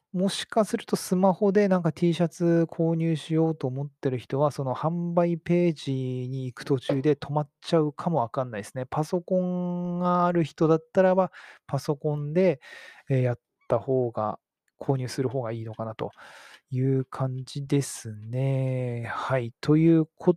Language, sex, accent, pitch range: Japanese, male, native, 125-175 Hz